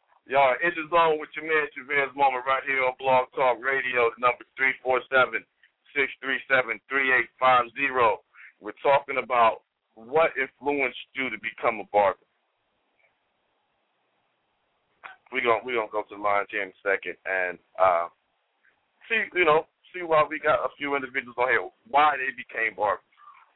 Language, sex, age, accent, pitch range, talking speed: English, male, 50-69, American, 115-140 Hz, 170 wpm